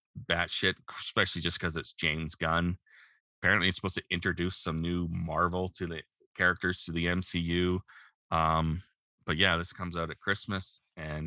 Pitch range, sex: 80-100 Hz, male